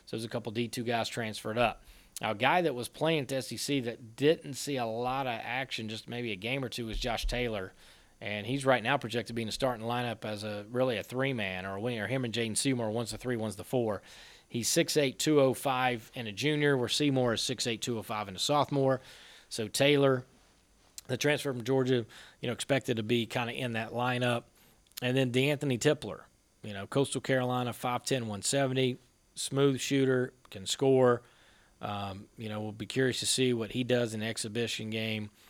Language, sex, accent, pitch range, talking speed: English, male, American, 110-130 Hz, 205 wpm